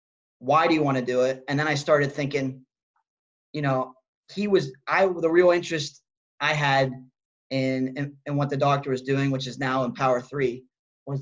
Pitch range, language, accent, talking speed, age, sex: 130-150 Hz, English, American, 200 wpm, 20-39, male